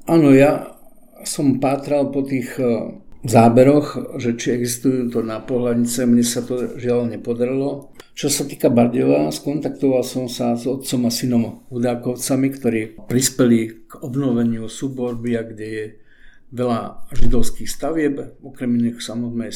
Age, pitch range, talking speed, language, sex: 50-69, 120-135 Hz, 130 wpm, Slovak, male